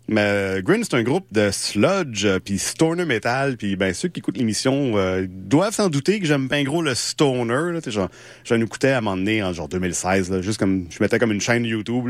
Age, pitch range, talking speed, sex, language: 30-49, 100-145 Hz, 230 wpm, male, French